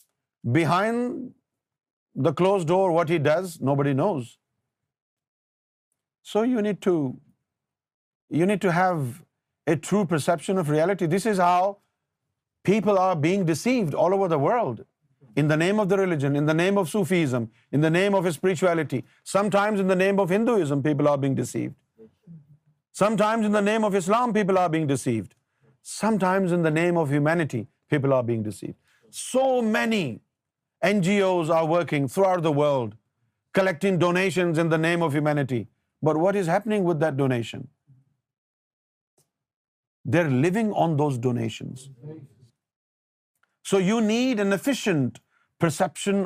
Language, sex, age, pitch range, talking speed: Urdu, male, 50-69, 135-195 Hz, 145 wpm